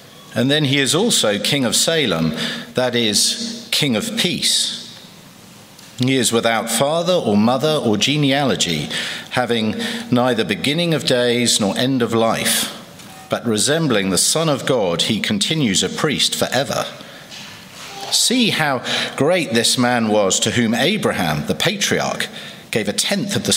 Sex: male